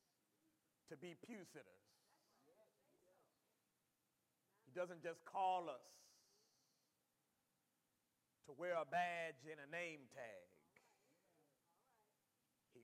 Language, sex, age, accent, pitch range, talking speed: English, male, 40-59, American, 185-285 Hz, 85 wpm